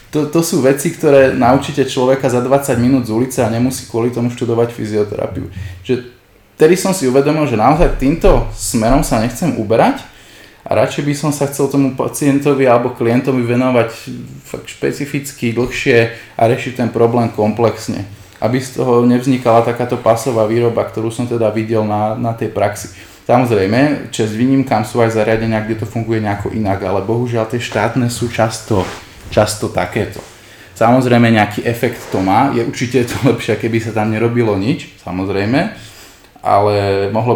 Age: 20-39